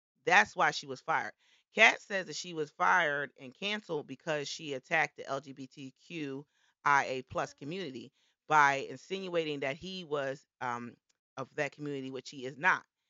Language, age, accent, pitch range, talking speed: English, 30-49, American, 140-195 Hz, 150 wpm